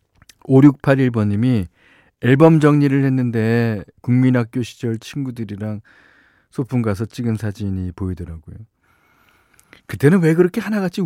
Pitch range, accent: 100-135 Hz, native